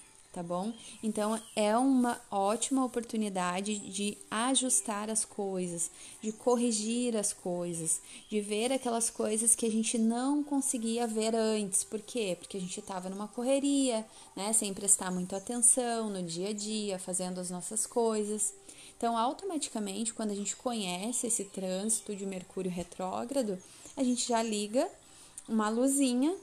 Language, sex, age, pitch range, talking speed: Portuguese, female, 30-49, 195-250 Hz, 145 wpm